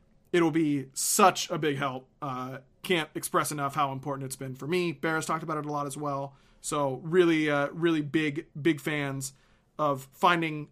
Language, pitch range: English, 145-190 Hz